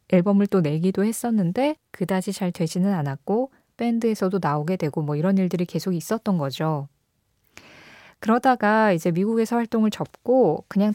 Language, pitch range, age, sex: Korean, 165-225 Hz, 20-39, female